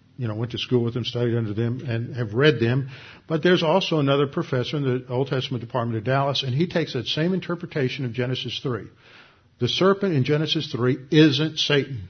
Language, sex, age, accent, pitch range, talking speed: English, male, 50-69, American, 125-155 Hz, 210 wpm